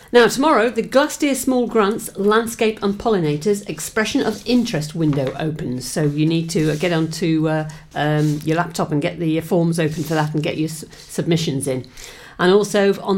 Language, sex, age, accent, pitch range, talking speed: English, female, 50-69, British, 155-200 Hz, 180 wpm